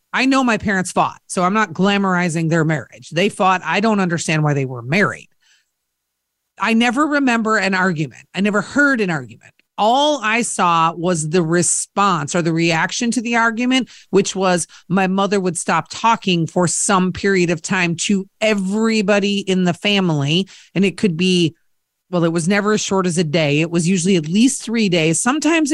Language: English